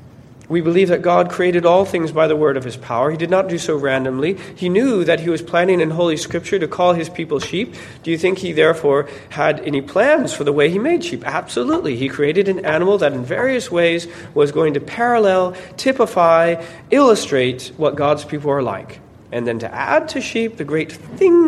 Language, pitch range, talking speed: English, 130-180 Hz, 210 wpm